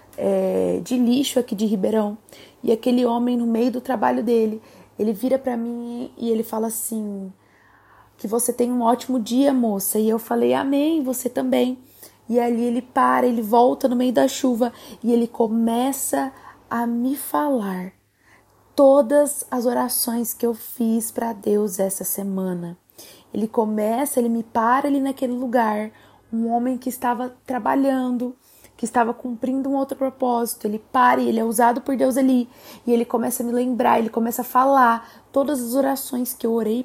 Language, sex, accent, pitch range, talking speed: Portuguese, female, Brazilian, 225-255 Hz, 170 wpm